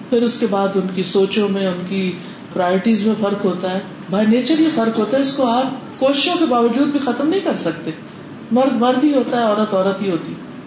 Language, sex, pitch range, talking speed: Urdu, female, 205-280 Hz, 225 wpm